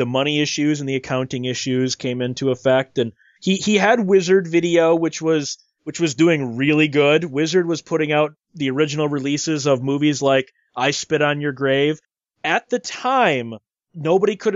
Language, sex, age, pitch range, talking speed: English, male, 30-49, 150-210 Hz, 175 wpm